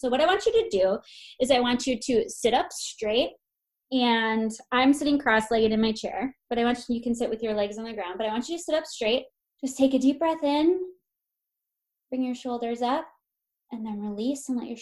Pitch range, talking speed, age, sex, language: 220-275 Hz, 240 wpm, 10-29, female, English